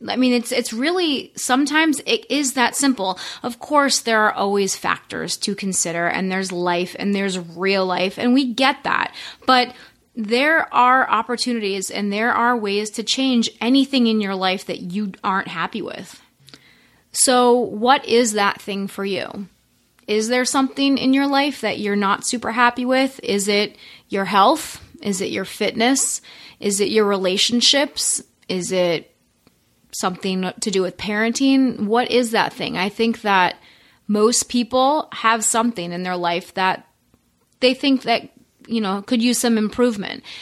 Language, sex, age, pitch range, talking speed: English, female, 30-49, 200-250 Hz, 165 wpm